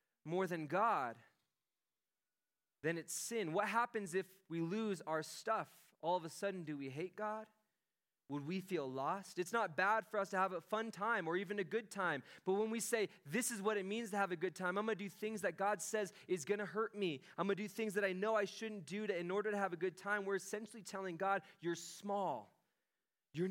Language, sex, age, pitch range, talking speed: English, male, 20-39, 140-195 Hz, 235 wpm